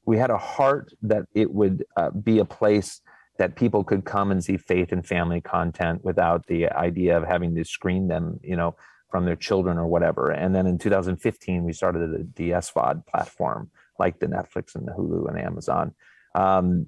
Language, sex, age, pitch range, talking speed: English, male, 30-49, 90-105 Hz, 190 wpm